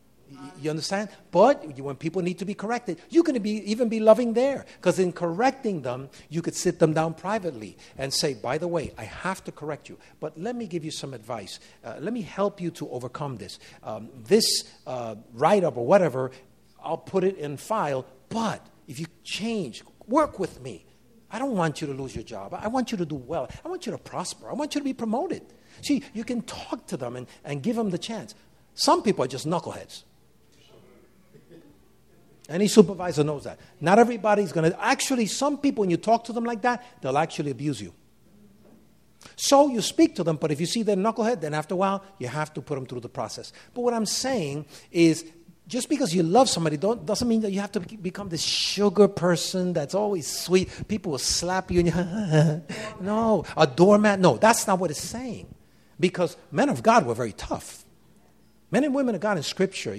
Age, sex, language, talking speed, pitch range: 50-69, male, English, 205 wpm, 155-220 Hz